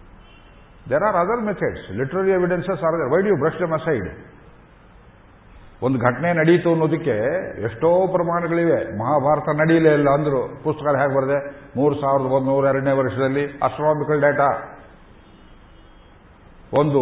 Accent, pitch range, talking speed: native, 135-155 Hz, 125 wpm